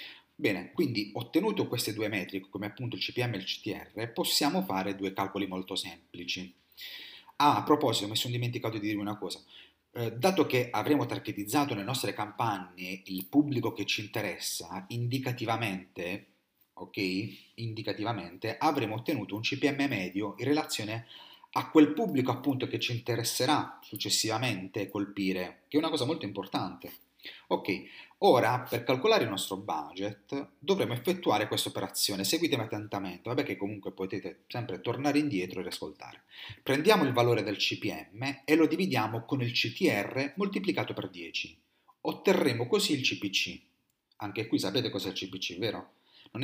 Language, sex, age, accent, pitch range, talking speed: Italian, male, 30-49, native, 100-140 Hz, 150 wpm